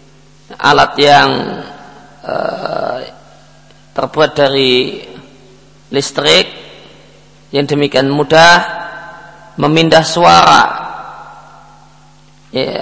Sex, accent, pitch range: male, native, 140-170 Hz